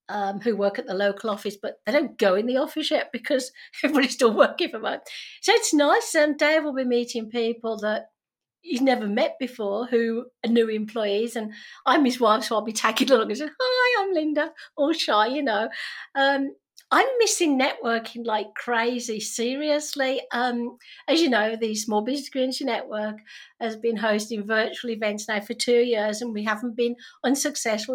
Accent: British